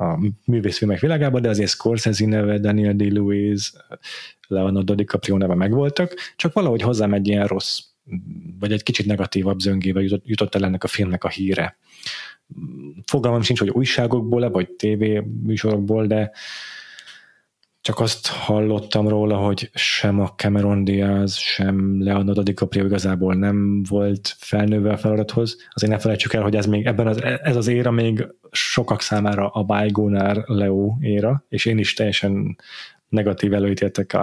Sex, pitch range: male, 100-115 Hz